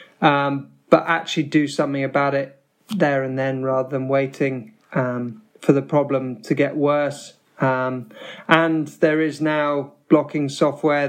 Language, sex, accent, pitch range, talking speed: English, male, British, 135-150 Hz, 145 wpm